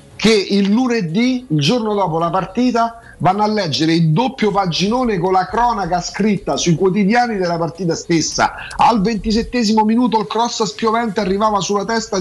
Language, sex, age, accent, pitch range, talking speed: Italian, male, 40-59, native, 145-200 Hz, 155 wpm